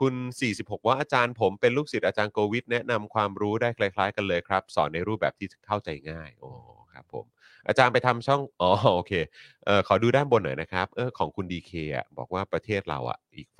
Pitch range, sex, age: 85-120 Hz, male, 30-49